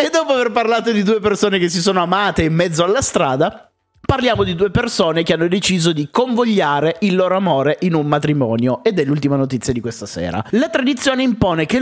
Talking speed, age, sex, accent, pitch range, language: 200 wpm, 30-49, male, native, 145-205 Hz, Italian